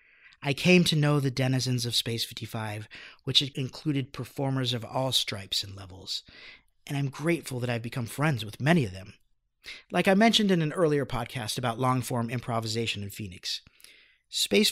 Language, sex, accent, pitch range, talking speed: English, male, American, 120-165 Hz, 165 wpm